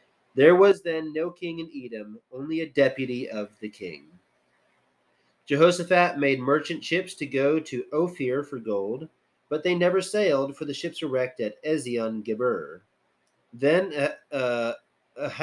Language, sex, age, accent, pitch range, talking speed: English, male, 30-49, American, 125-170 Hz, 140 wpm